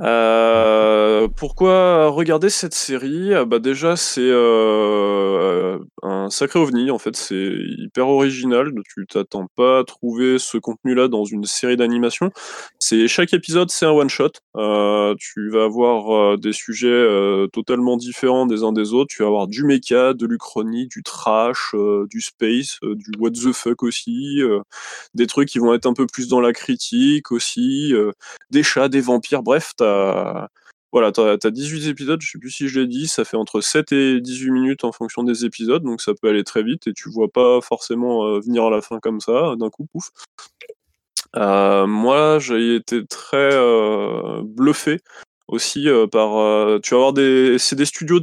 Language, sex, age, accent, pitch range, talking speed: French, male, 20-39, French, 115-140 Hz, 185 wpm